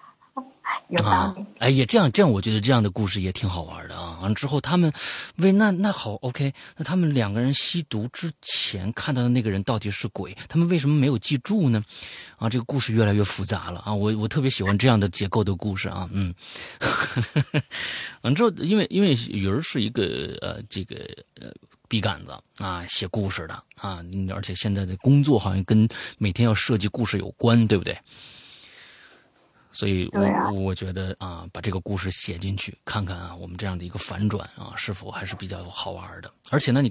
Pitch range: 95-125 Hz